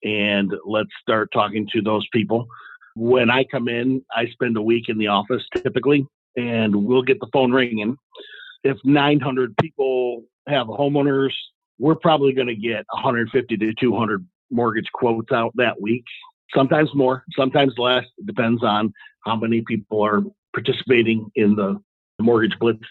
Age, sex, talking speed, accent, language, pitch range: 50-69, male, 155 wpm, American, English, 110-140 Hz